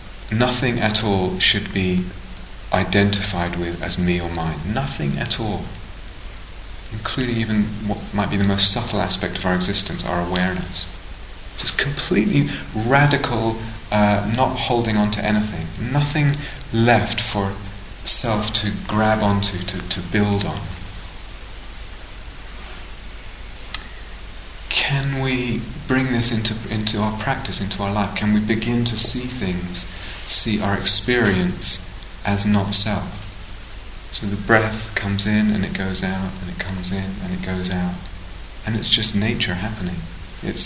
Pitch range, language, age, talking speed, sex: 90-110 Hz, English, 30-49, 140 wpm, male